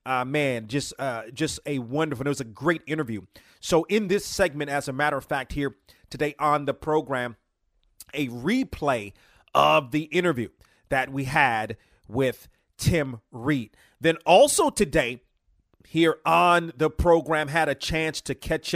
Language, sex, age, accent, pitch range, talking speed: English, male, 30-49, American, 125-155 Hz, 155 wpm